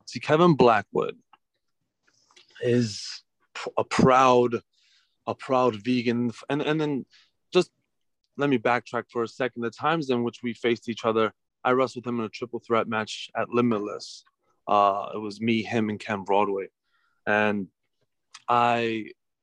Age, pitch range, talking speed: 30-49, 110-120 Hz, 150 wpm